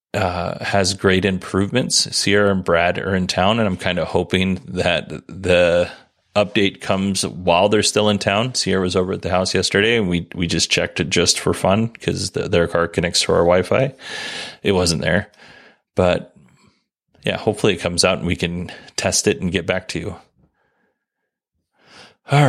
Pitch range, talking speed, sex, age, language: 95-115 Hz, 180 wpm, male, 30-49, English